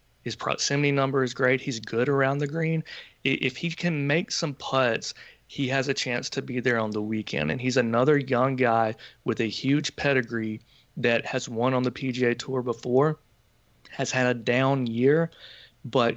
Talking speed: 180 wpm